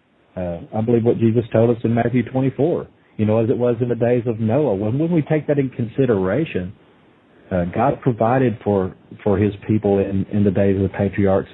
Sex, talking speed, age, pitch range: male, 215 wpm, 40-59, 105-120 Hz